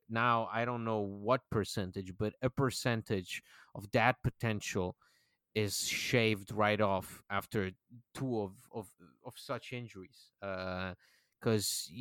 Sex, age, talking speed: male, 30-49, 125 wpm